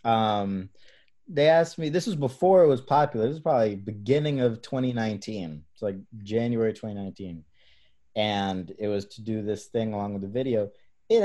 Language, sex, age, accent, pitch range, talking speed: English, male, 20-39, American, 110-160 Hz, 170 wpm